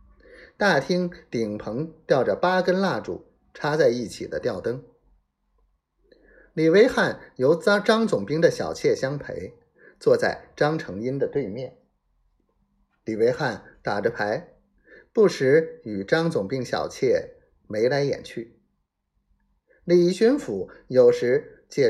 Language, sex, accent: Chinese, male, native